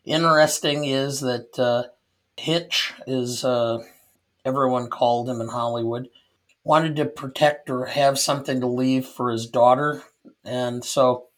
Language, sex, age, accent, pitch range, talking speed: English, male, 50-69, American, 125-145 Hz, 125 wpm